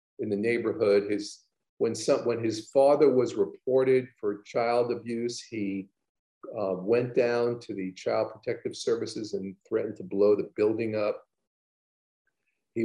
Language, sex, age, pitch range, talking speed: English, male, 50-69, 95-120 Hz, 145 wpm